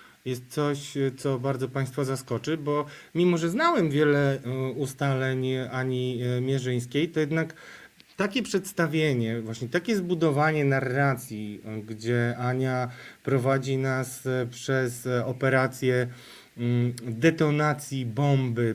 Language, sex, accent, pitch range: Polish, male, native, 120-140 Hz